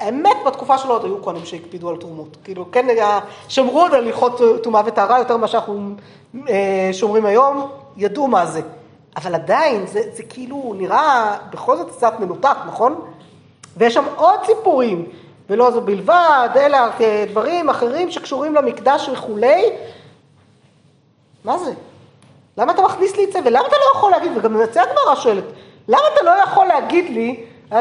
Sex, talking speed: female, 155 wpm